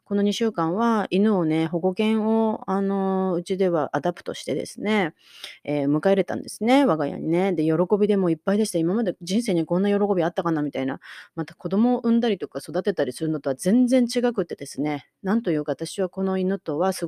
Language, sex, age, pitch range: Japanese, female, 30-49, 160-205 Hz